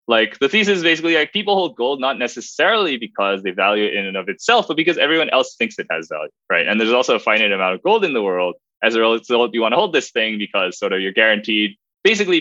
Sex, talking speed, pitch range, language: male, 260 wpm, 105-170 Hz, English